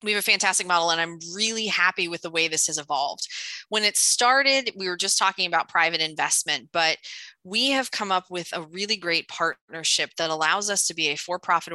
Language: English